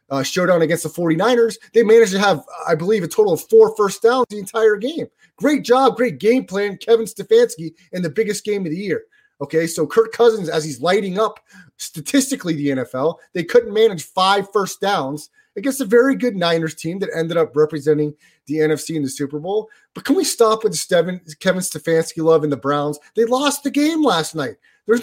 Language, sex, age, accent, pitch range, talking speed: English, male, 30-49, American, 170-250 Hz, 205 wpm